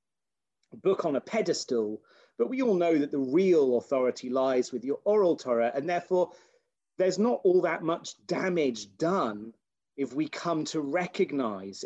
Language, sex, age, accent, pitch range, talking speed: English, male, 30-49, British, 120-185 Hz, 155 wpm